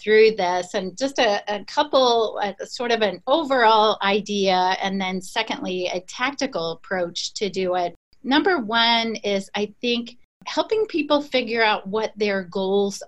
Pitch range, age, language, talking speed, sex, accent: 195-245 Hz, 40-59, English, 150 wpm, female, American